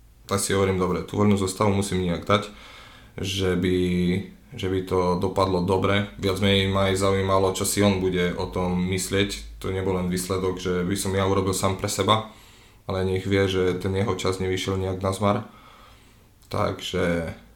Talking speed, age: 180 wpm, 20-39